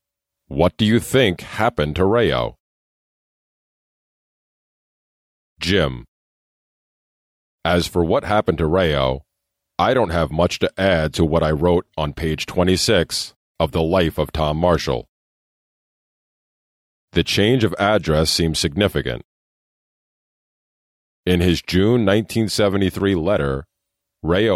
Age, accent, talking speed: 40-59, American, 110 wpm